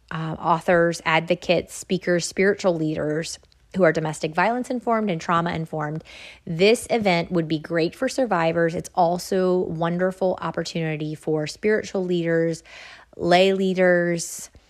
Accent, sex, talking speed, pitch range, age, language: American, female, 120 wpm, 160-190 Hz, 30-49, English